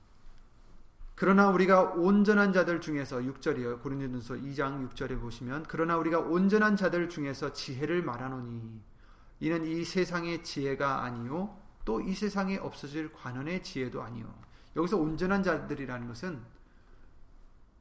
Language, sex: Korean, male